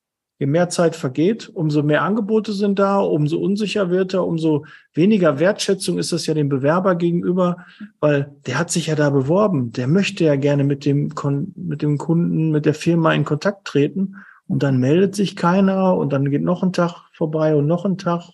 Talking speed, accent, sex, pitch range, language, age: 195 wpm, German, male, 155-195 Hz, German, 50-69